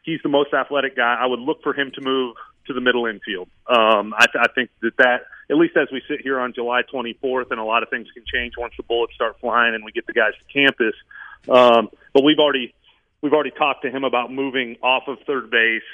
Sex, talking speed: male, 250 wpm